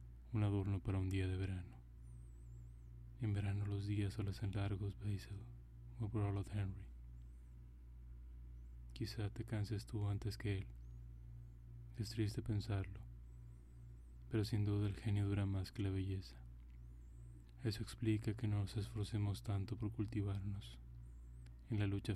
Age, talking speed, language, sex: 20-39, 140 wpm, Spanish, male